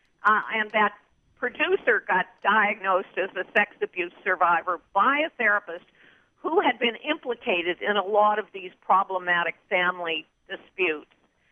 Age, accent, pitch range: 50-69, American, 200-270 Hz